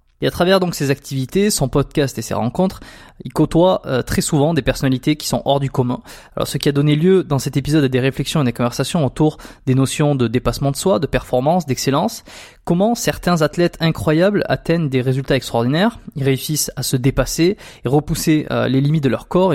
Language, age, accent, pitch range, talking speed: French, 20-39, French, 130-160 Hz, 205 wpm